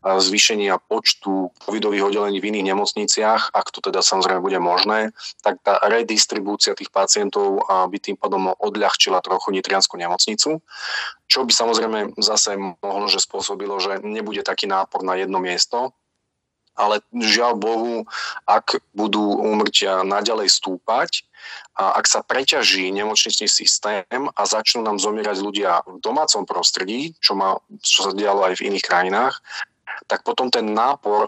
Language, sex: Slovak, male